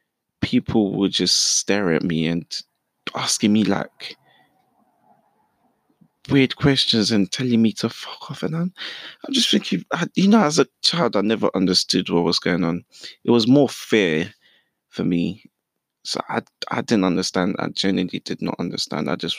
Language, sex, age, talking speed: English, male, 20-39, 160 wpm